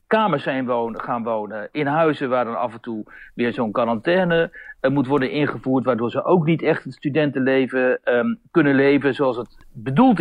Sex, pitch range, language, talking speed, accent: male, 130-170 Hz, Dutch, 165 wpm, Dutch